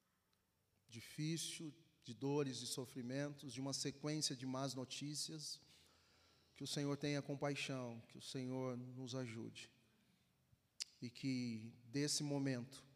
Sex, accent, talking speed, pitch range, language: male, Brazilian, 115 wpm, 125-155 Hz, Portuguese